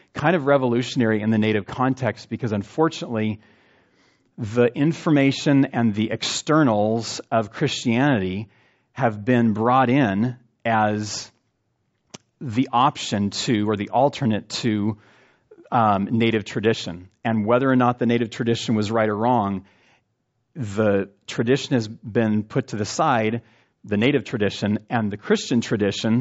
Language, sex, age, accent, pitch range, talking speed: English, male, 40-59, American, 105-125 Hz, 130 wpm